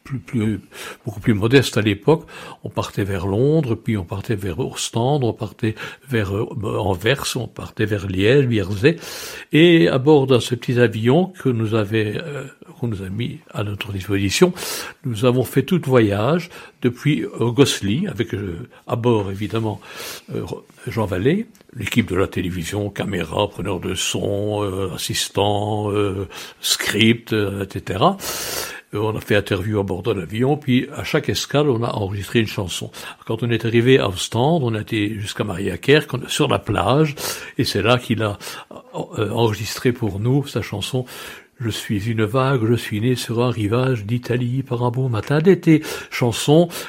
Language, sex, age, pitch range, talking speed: French, male, 60-79, 105-130 Hz, 170 wpm